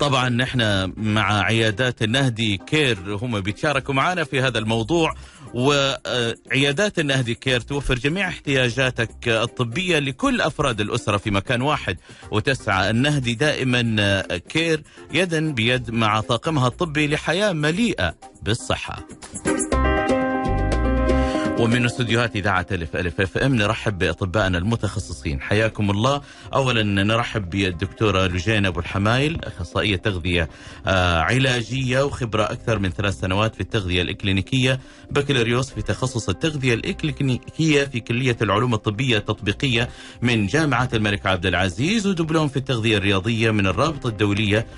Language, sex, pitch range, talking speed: Arabic, male, 100-135 Hz, 120 wpm